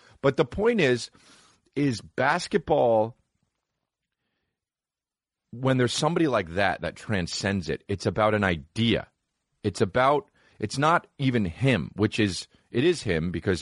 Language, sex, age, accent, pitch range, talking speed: English, male, 30-49, American, 85-115 Hz, 130 wpm